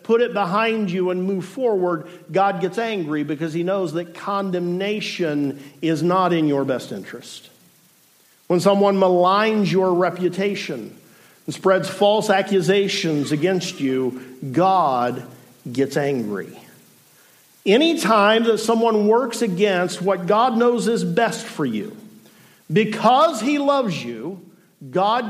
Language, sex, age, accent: English, male, 50-69, American